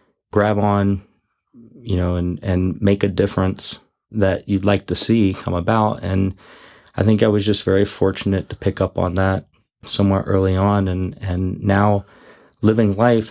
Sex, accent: male, American